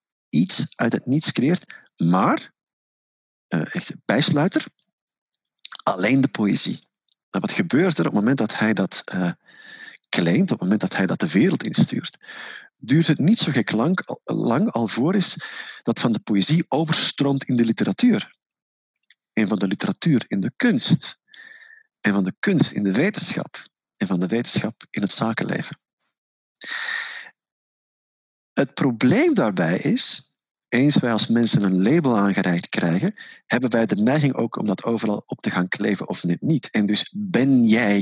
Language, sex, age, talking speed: Dutch, male, 50-69, 155 wpm